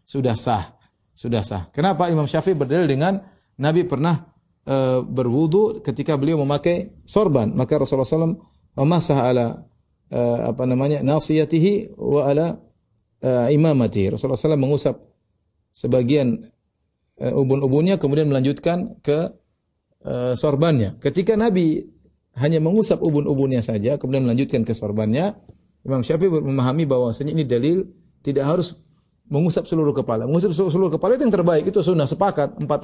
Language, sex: Indonesian, male